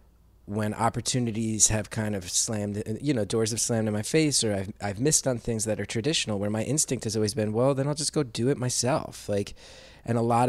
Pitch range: 95-115 Hz